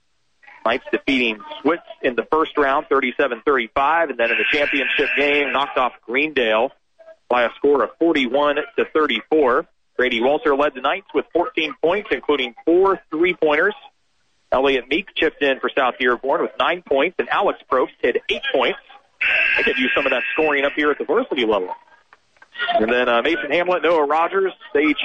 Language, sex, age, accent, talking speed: English, male, 40-59, American, 170 wpm